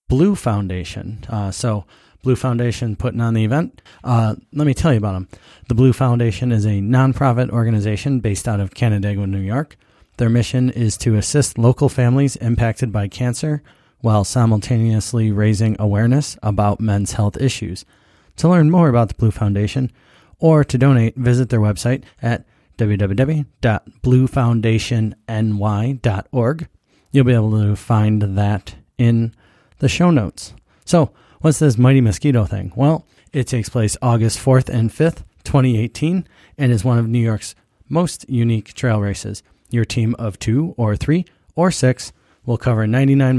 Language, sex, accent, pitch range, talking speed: English, male, American, 105-130 Hz, 150 wpm